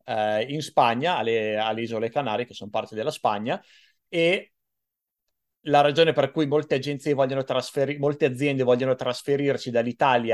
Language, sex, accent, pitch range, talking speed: Italian, male, native, 130-165 Hz, 140 wpm